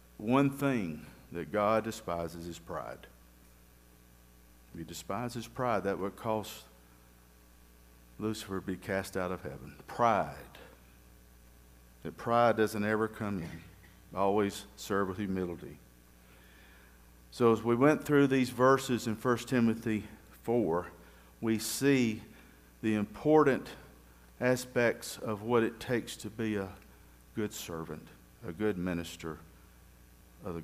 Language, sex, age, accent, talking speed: English, male, 50-69, American, 120 wpm